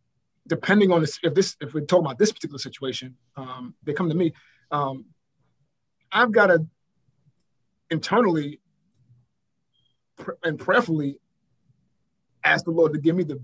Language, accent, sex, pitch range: English, American, male, 135-165 Hz